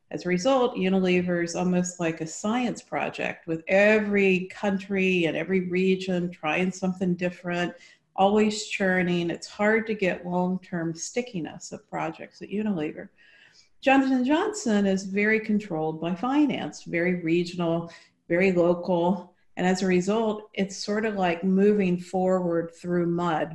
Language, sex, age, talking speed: English, female, 50-69, 140 wpm